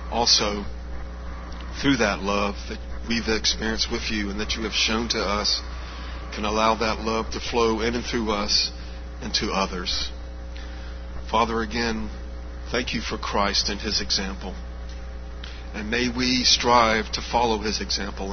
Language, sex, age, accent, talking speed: English, male, 40-59, American, 150 wpm